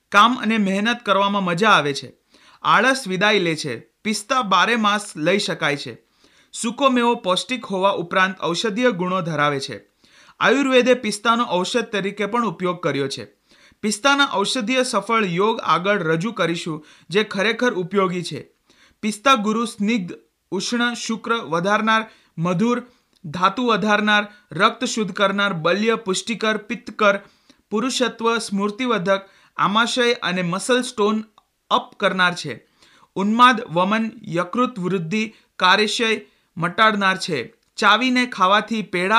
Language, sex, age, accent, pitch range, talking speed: Hindi, male, 30-49, native, 180-230 Hz, 55 wpm